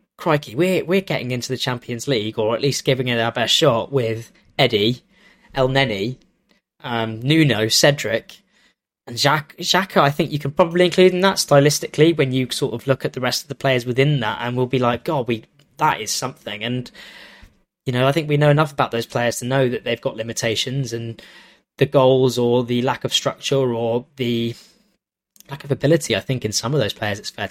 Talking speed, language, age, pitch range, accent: 205 wpm, English, 10-29, 120-155 Hz, British